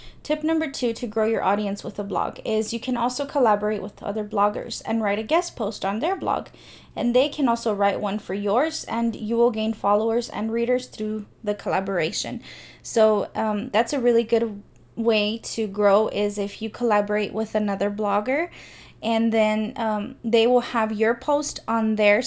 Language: English